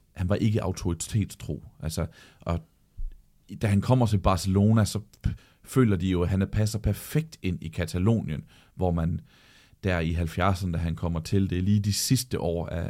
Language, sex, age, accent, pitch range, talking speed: Danish, male, 40-59, native, 85-105 Hz, 180 wpm